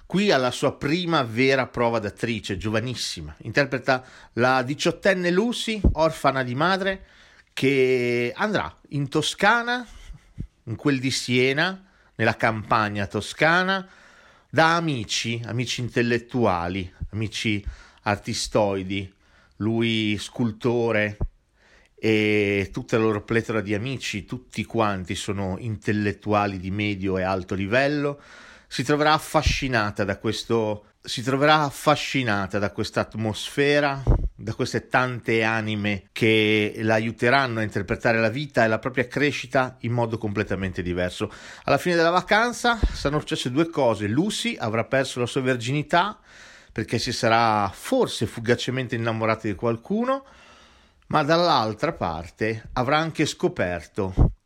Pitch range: 105-140 Hz